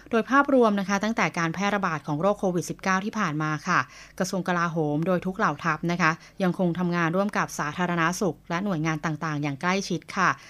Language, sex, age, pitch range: Thai, female, 20-39, 165-195 Hz